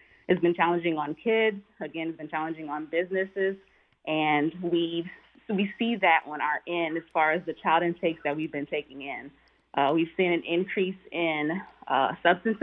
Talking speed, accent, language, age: 185 wpm, American, English, 20-39